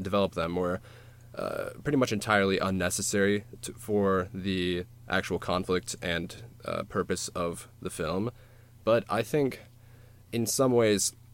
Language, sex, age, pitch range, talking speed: English, male, 20-39, 95-115 Hz, 130 wpm